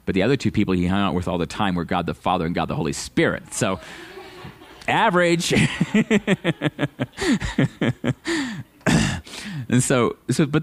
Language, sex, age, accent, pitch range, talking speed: English, male, 40-59, American, 100-135 Hz, 150 wpm